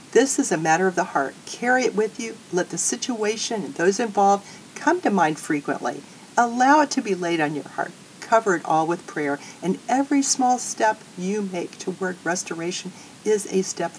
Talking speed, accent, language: 195 wpm, American, English